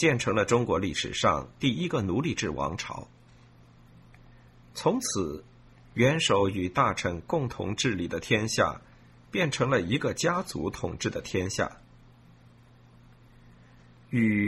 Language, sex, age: Chinese, male, 50-69